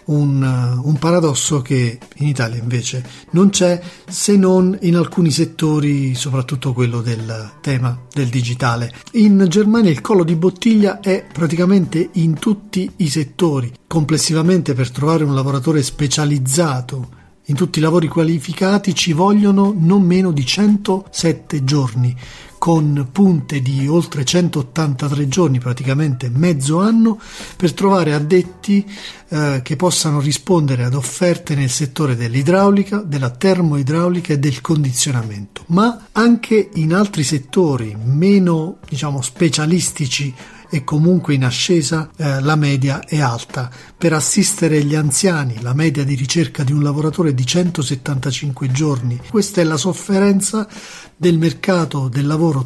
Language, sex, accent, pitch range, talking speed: Italian, male, native, 140-180 Hz, 130 wpm